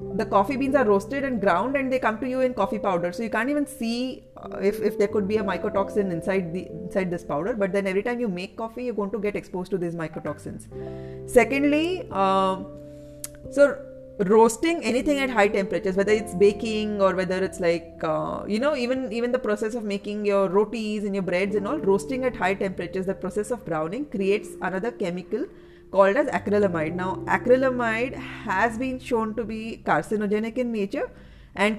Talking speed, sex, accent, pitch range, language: 195 wpm, female, Indian, 185-230 Hz, English